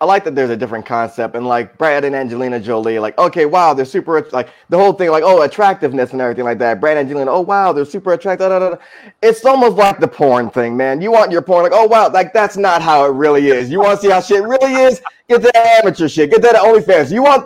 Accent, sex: American, male